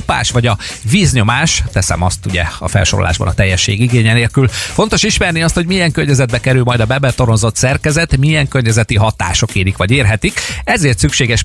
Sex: male